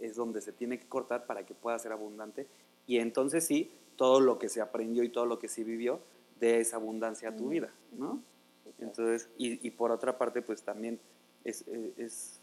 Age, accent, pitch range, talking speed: 30-49, Mexican, 110-130 Hz, 205 wpm